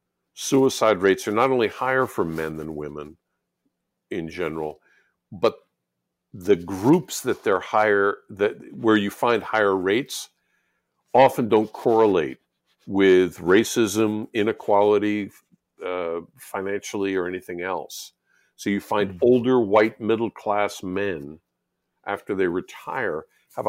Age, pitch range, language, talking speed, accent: 50-69, 90-110 Hz, English, 120 wpm, American